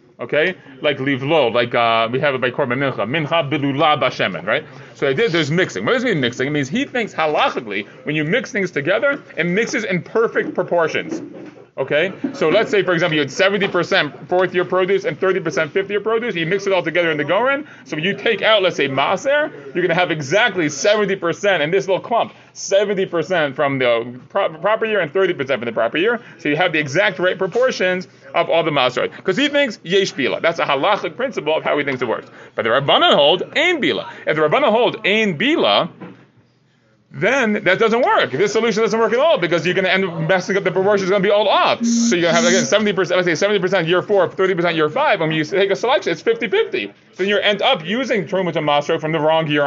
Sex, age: male, 30-49